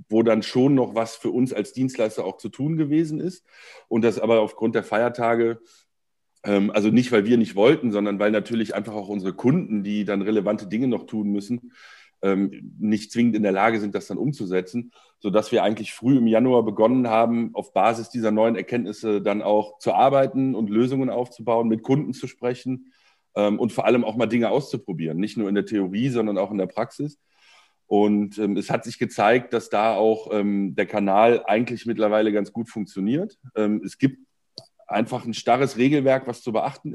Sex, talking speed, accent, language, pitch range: male, 190 wpm, German, German, 105-125 Hz